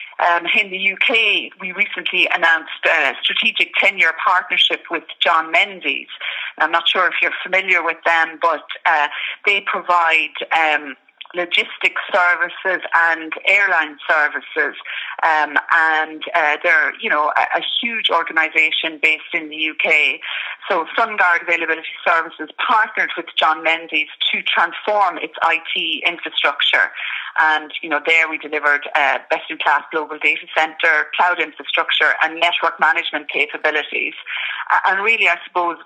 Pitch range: 155-180 Hz